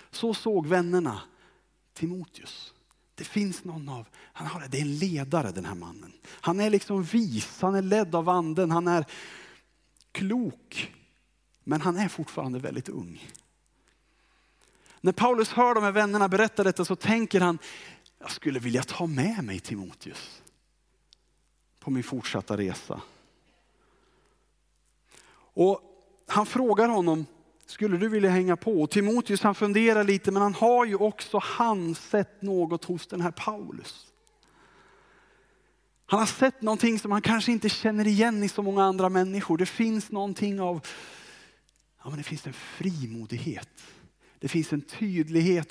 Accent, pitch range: Norwegian, 145-205 Hz